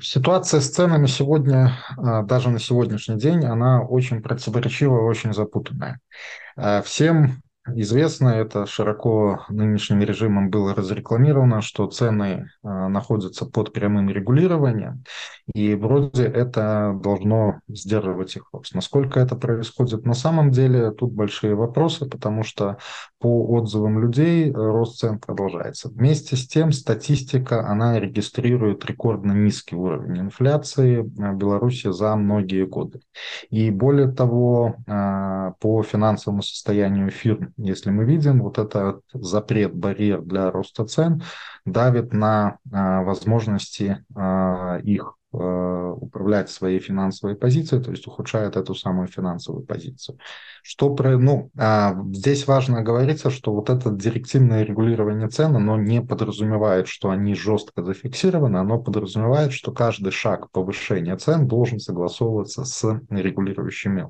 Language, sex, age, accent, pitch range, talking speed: Russian, male, 20-39, native, 100-130 Hz, 120 wpm